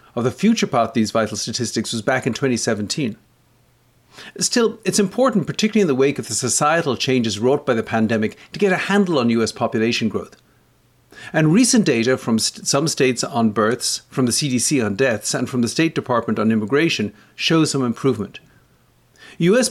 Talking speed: 180 wpm